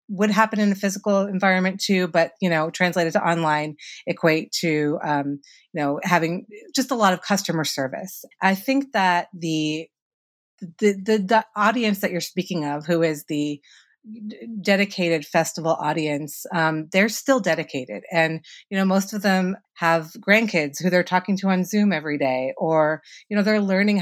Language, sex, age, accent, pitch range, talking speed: English, female, 30-49, American, 155-190 Hz, 170 wpm